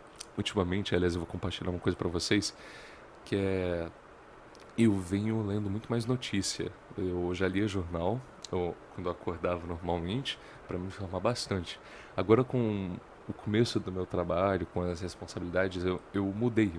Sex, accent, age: male, Brazilian, 20-39